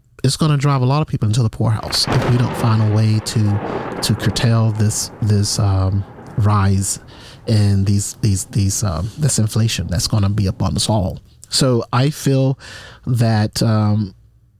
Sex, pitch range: male, 105-125 Hz